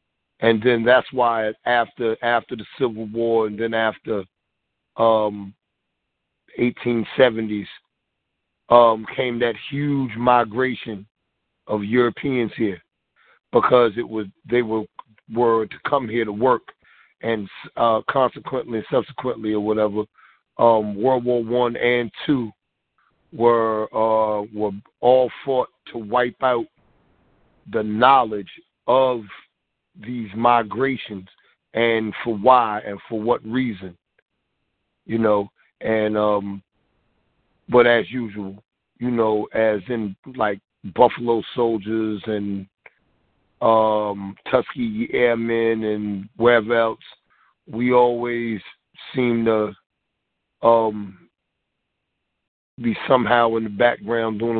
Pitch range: 105-120 Hz